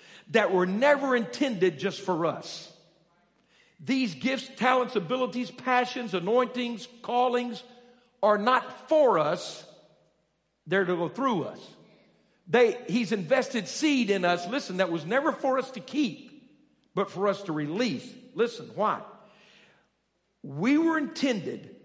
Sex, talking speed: male, 125 wpm